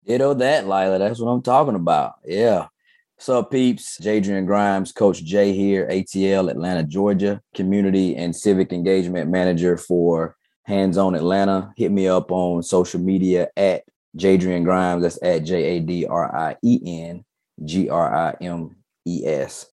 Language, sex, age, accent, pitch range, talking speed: English, male, 30-49, American, 85-100 Hz, 125 wpm